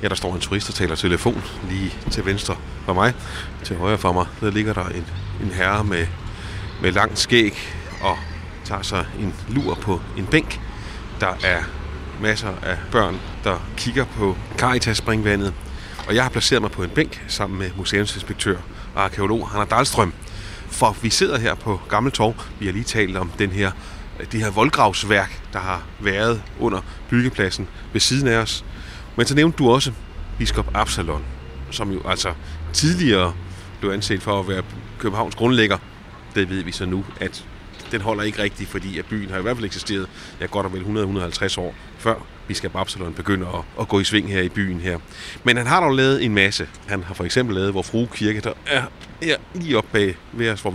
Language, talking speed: Danish, 185 wpm